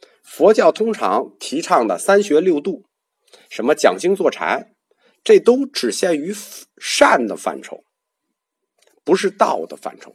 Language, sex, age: Chinese, male, 50-69